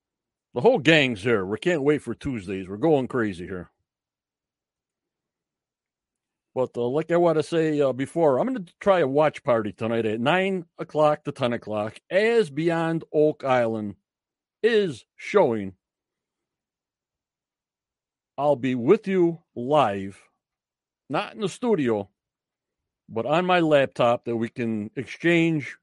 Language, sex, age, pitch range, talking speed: English, male, 60-79, 120-175 Hz, 135 wpm